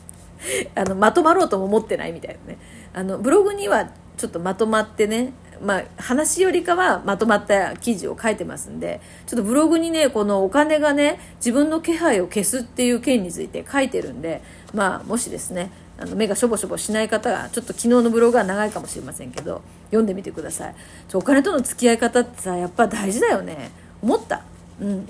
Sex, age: female, 40-59